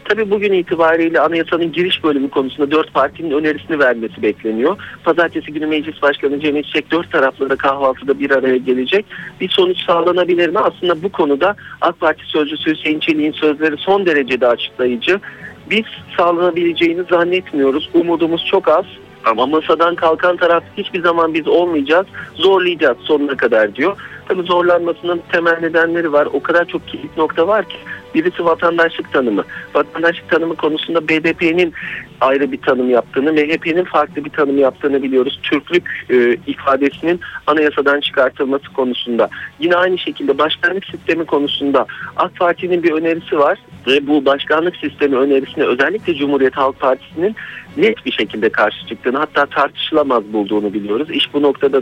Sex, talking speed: male, 145 wpm